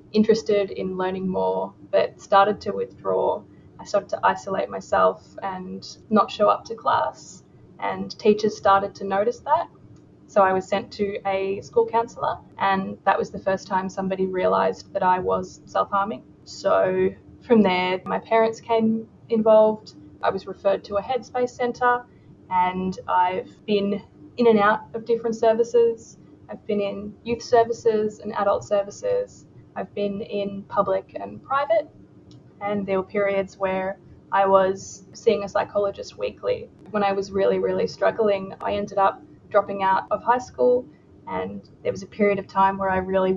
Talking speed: 160 wpm